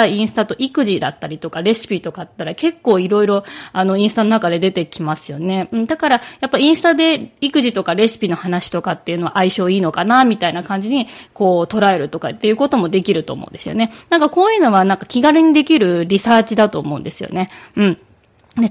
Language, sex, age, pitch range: Japanese, female, 20-39, 180-245 Hz